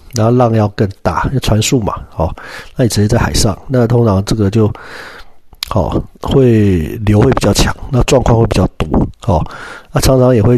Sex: male